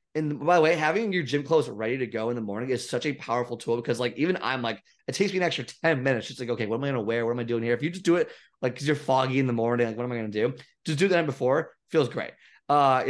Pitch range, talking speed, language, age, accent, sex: 120-155 Hz, 320 wpm, English, 20-39, American, male